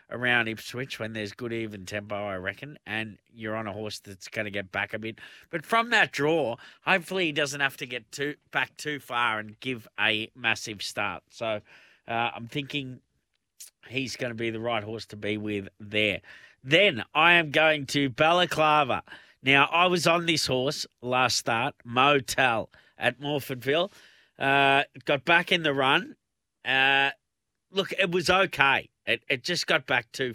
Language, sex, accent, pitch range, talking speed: English, male, Australian, 115-145 Hz, 175 wpm